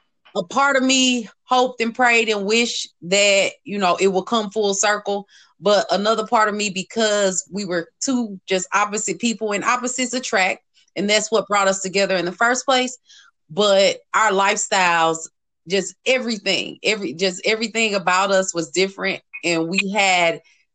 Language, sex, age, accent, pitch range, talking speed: English, female, 30-49, American, 195-240 Hz, 165 wpm